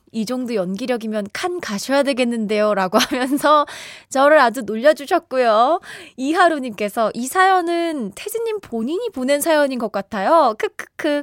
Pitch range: 200-310 Hz